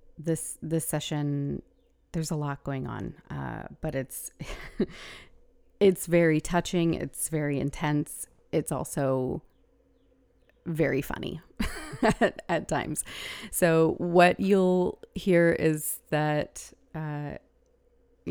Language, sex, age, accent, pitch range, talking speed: English, female, 30-49, American, 145-180 Hz, 100 wpm